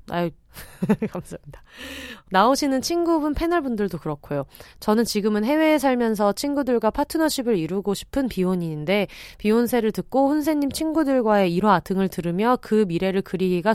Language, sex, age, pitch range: Korean, female, 30-49, 175-255 Hz